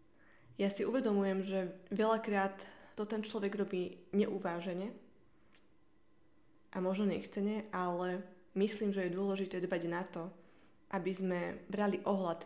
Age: 20-39